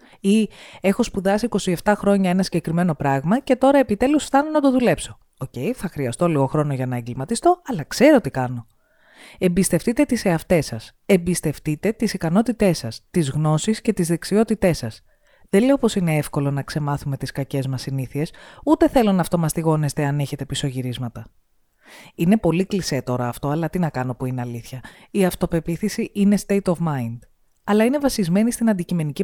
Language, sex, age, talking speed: Greek, female, 20-39, 170 wpm